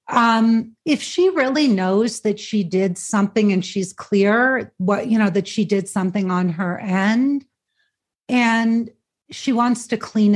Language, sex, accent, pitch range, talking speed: English, female, American, 195-240 Hz, 155 wpm